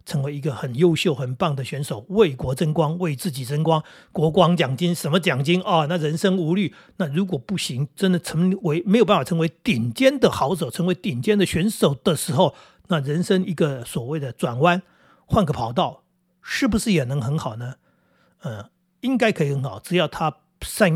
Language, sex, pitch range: Chinese, male, 135-180 Hz